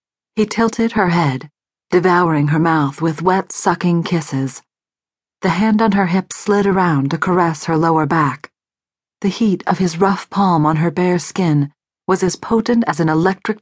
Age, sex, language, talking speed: 40-59, female, English, 170 wpm